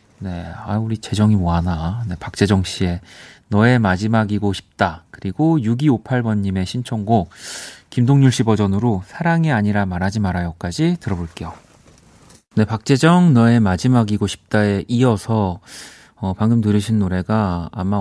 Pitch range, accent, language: 95-125 Hz, native, Korean